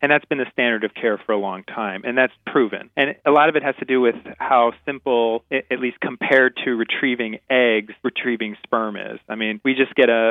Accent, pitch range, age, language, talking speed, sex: American, 105-130 Hz, 30-49, English, 225 wpm, male